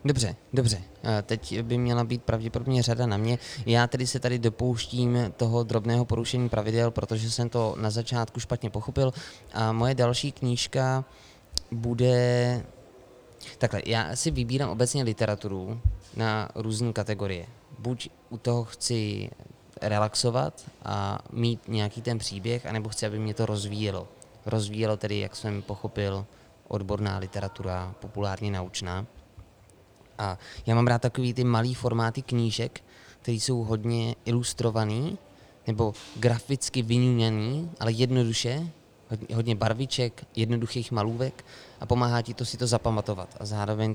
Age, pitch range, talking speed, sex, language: 20-39, 105-120 Hz, 130 wpm, male, Czech